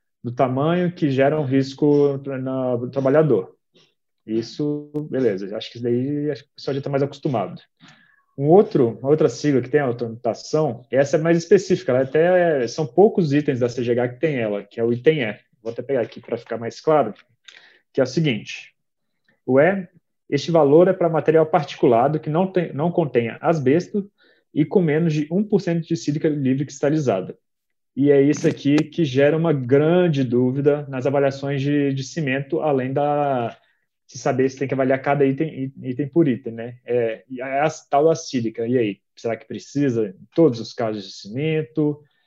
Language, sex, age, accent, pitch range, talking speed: Portuguese, male, 30-49, Brazilian, 130-155 Hz, 190 wpm